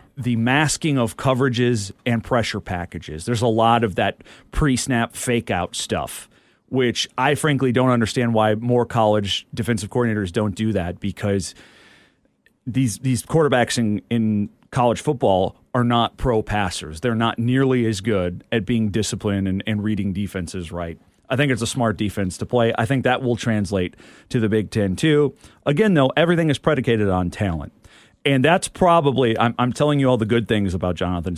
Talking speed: 175 wpm